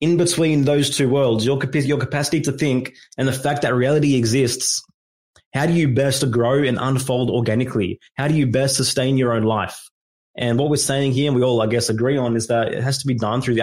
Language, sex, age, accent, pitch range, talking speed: English, male, 20-39, Australian, 120-150 Hz, 240 wpm